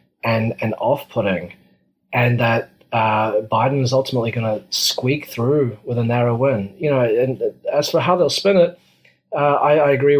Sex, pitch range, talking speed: male, 115-135 Hz, 175 wpm